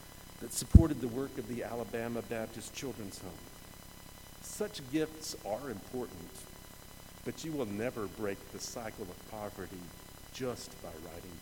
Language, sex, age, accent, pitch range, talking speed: English, male, 50-69, American, 95-135 Hz, 135 wpm